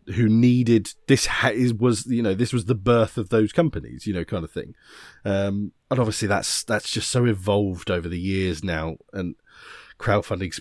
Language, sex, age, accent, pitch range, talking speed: English, male, 30-49, British, 95-120 Hz, 190 wpm